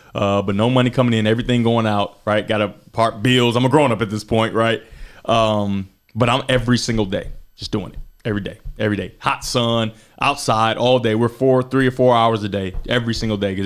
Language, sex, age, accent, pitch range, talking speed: English, male, 20-39, American, 100-115 Hz, 230 wpm